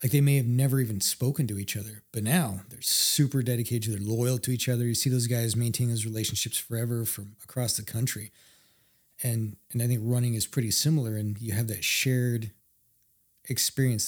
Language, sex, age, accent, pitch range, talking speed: English, male, 30-49, American, 110-130 Hz, 200 wpm